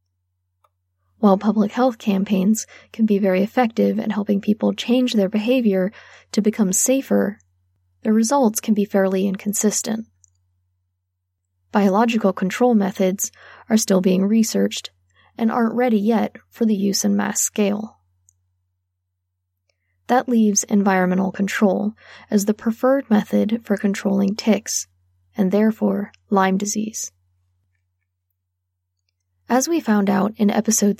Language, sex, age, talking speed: English, female, 10-29, 120 wpm